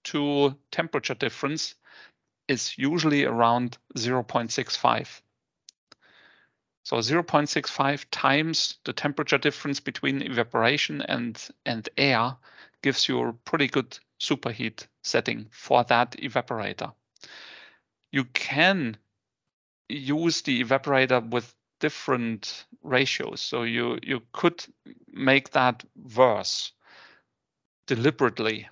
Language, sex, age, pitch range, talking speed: English, male, 40-59, 110-140 Hz, 90 wpm